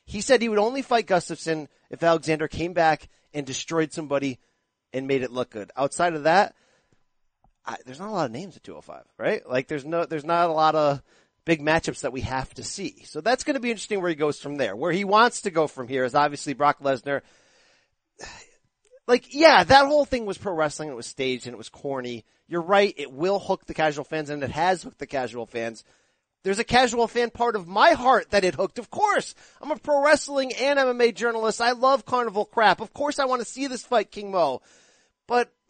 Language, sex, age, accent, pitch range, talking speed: English, male, 30-49, American, 155-245 Hz, 220 wpm